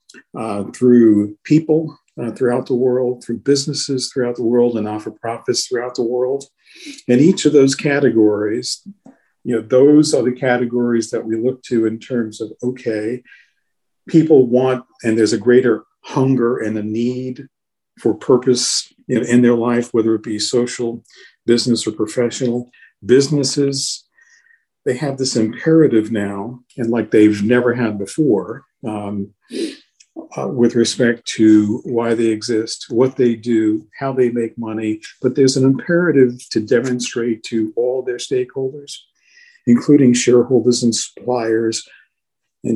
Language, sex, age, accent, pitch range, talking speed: English, male, 50-69, American, 115-130 Hz, 145 wpm